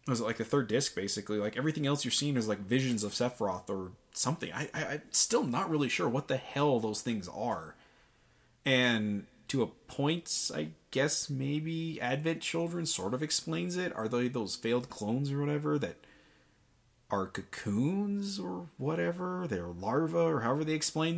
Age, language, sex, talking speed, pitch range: 20-39, English, male, 170 wpm, 105-150 Hz